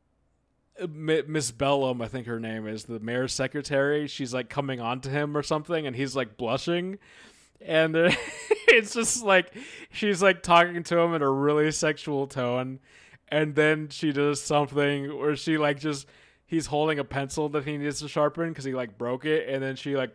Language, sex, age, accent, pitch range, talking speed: English, male, 20-39, American, 125-165 Hz, 190 wpm